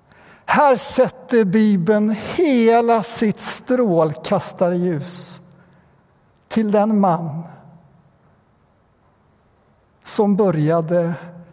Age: 60-79